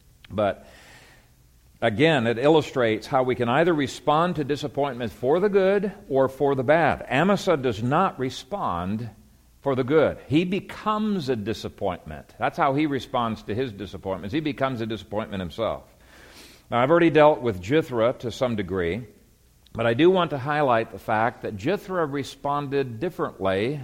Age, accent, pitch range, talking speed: 50-69, American, 110-145 Hz, 155 wpm